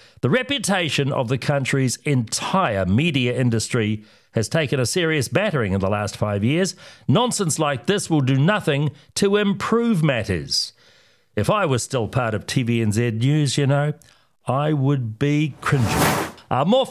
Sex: male